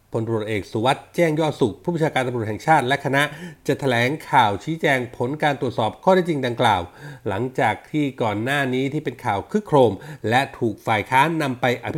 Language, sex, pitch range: Thai, male, 115-145 Hz